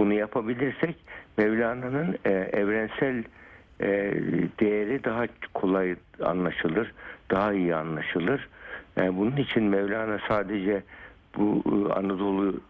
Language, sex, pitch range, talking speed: Turkish, male, 90-110 Hz, 80 wpm